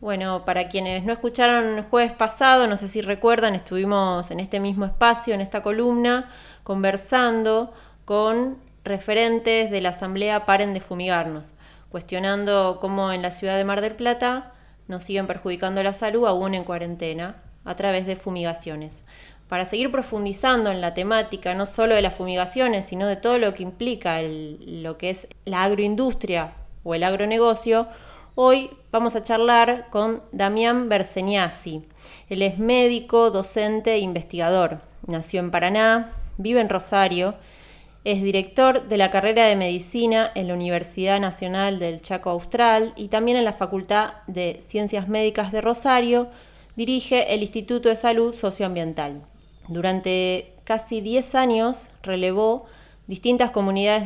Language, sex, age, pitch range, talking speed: Spanish, female, 20-39, 185-225 Hz, 145 wpm